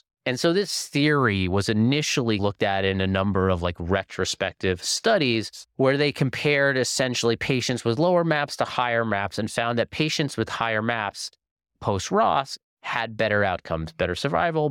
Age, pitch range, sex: 30-49, 95-125 Hz, male